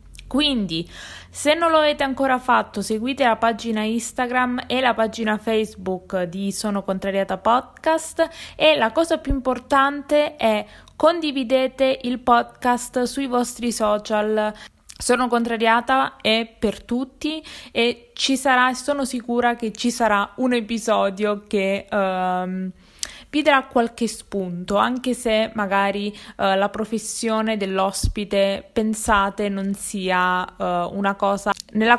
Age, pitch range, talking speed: 20-39, 200-255 Hz, 125 wpm